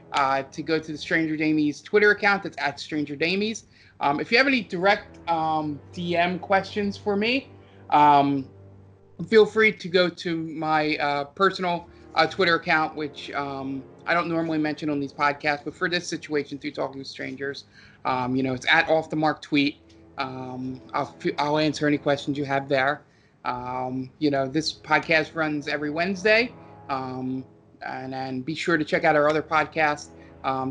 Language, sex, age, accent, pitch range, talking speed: English, male, 30-49, American, 130-160 Hz, 180 wpm